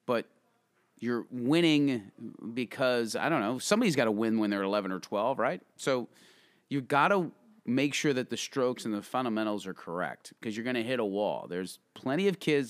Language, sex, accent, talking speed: English, male, American, 195 wpm